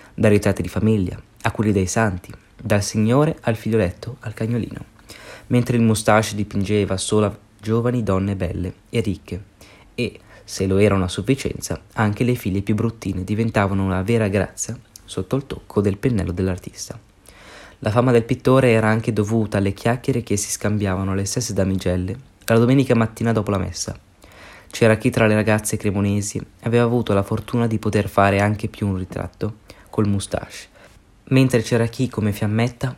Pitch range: 100-120 Hz